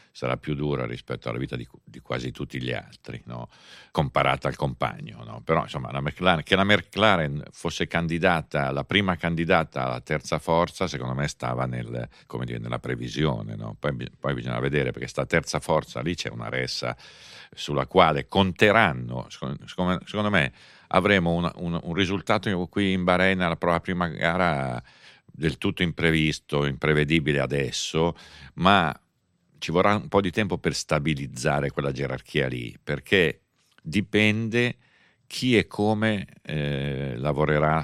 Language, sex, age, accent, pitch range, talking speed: Italian, male, 50-69, native, 70-90 Hz, 150 wpm